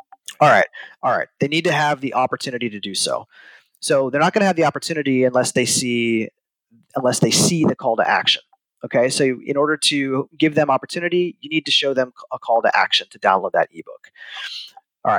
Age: 30-49